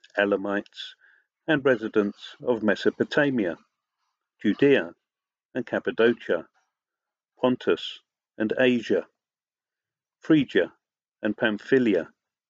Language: English